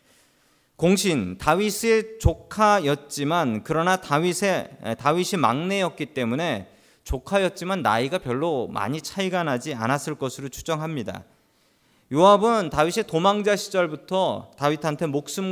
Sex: male